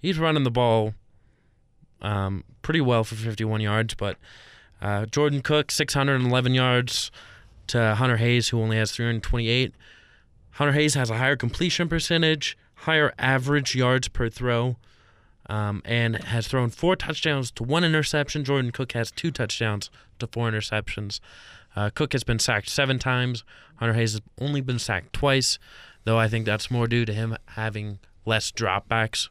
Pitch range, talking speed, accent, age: 110-140 Hz, 160 wpm, American, 20-39